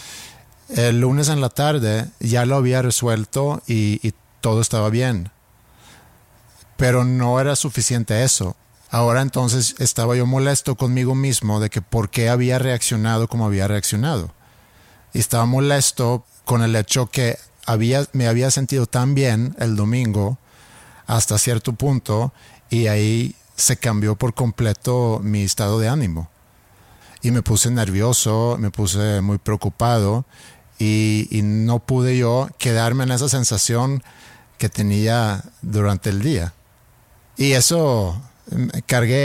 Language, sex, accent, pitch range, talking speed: Spanish, male, Mexican, 105-125 Hz, 135 wpm